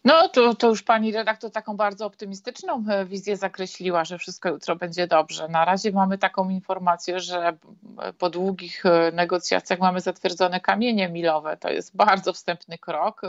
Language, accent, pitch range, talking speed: Polish, native, 170-195 Hz, 155 wpm